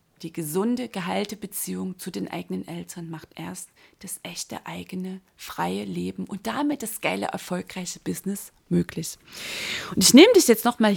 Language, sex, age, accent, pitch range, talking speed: German, female, 30-49, German, 180-220 Hz, 155 wpm